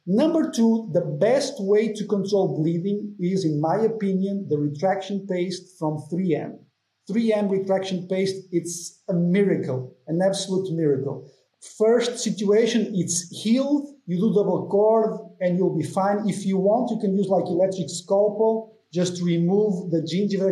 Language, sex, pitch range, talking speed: English, male, 165-210 Hz, 150 wpm